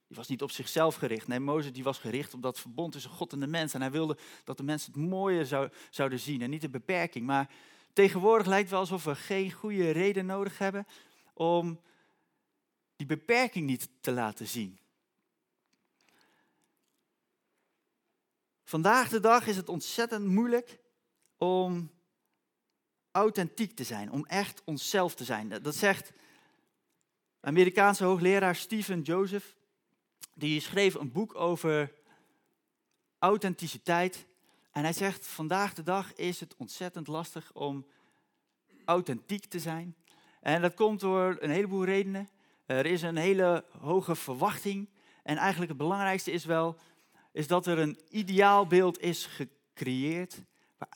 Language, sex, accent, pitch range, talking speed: Dutch, male, Dutch, 155-200 Hz, 140 wpm